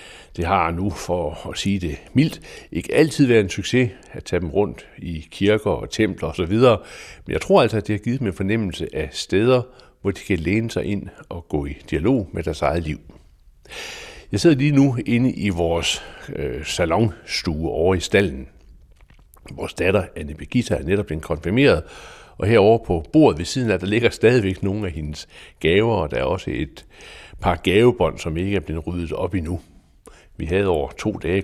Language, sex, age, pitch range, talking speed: Danish, male, 60-79, 80-115 Hz, 195 wpm